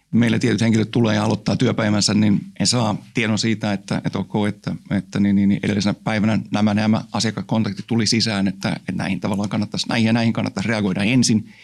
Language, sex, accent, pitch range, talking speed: Finnish, male, native, 105-120 Hz, 175 wpm